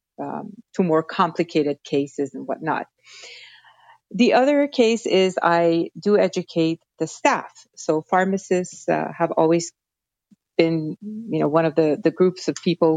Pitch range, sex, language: 160-195 Hz, female, English